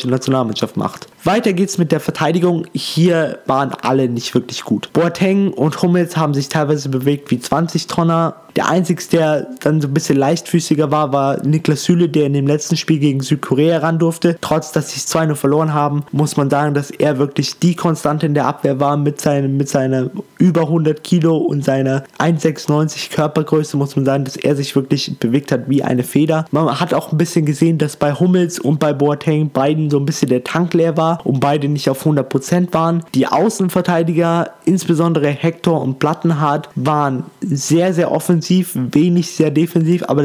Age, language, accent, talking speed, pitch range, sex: 20-39, German, German, 190 wpm, 140-165 Hz, male